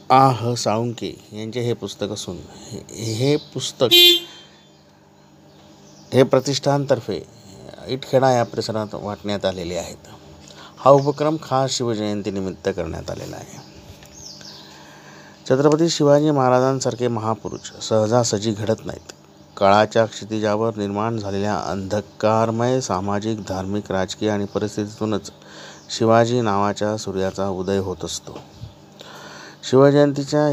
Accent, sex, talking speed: native, male, 85 wpm